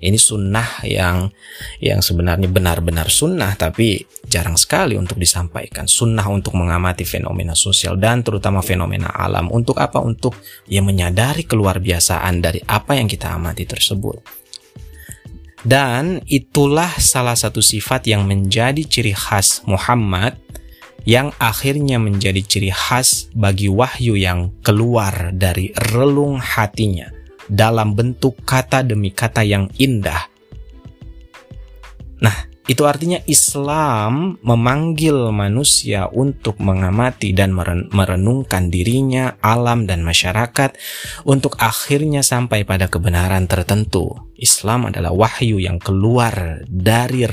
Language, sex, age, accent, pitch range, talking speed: Indonesian, male, 30-49, native, 95-125 Hz, 115 wpm